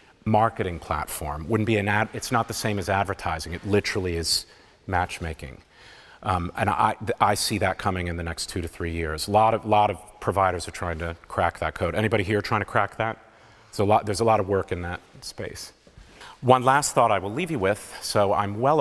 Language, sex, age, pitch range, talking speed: English, male, 40-59, 90-115 Hz, 225 wpm